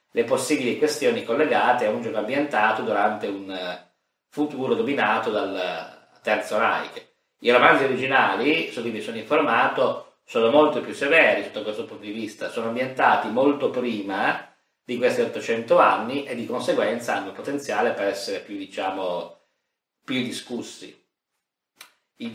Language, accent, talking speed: Italian, native, 140 wpm